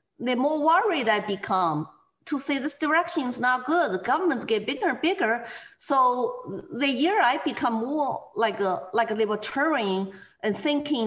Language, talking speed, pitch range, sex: English, 170 wpm, 195-260 Hz, female